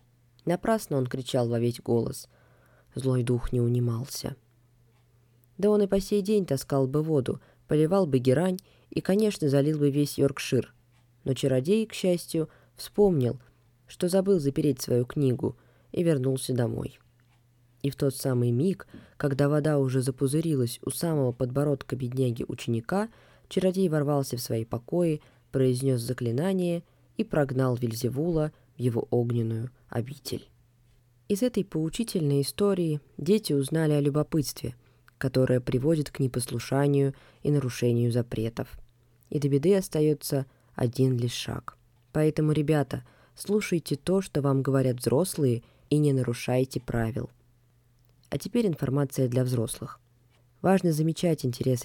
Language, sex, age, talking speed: Russian, female, 20-39, 125 wpm